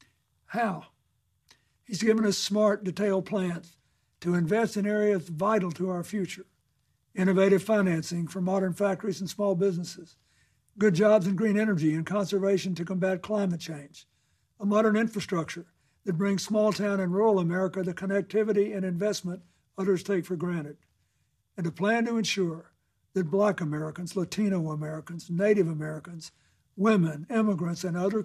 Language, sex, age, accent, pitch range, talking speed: English, male, 60-79, American, 170-205 Hz, 140 wpm